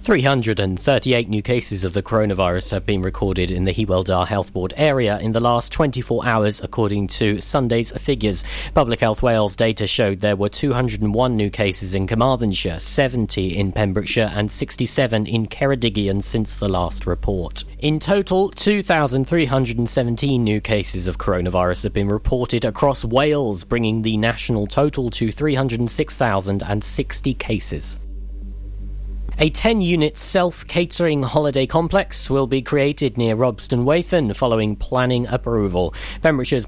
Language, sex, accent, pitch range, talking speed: English, male, British, 105-140 Hz, 135 wpm